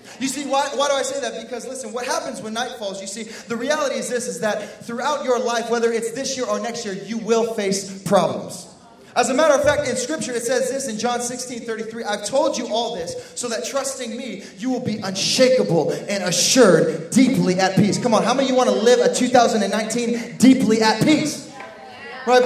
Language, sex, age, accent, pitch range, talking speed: English, male, 20-39, American, 210-260 Hz, 220 wpm